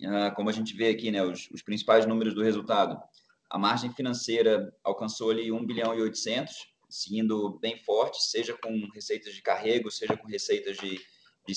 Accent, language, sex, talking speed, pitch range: Brazilian, Portuguese, male, 175 wpm, 105-120 Hz